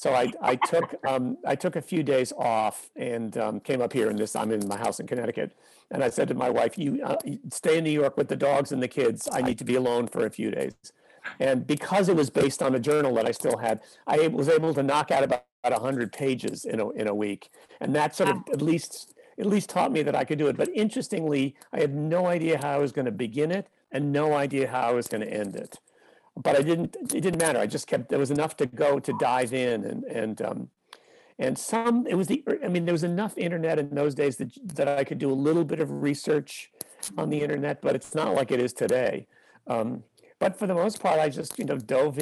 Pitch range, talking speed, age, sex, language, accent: 135-175 Hz, 255 wpm, 50-69, male, English, American